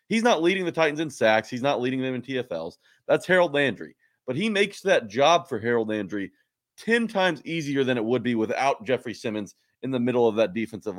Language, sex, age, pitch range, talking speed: English, male, 30-49, 115-160 Hz, 220 wpm